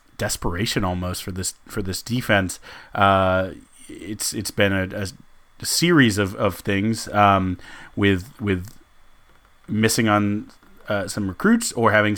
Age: 30-49